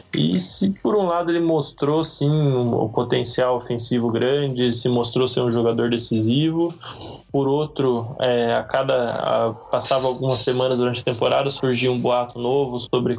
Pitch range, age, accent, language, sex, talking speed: 115-135 Hz, 20-39, Brazilian, Portuguese, male, 170 wpm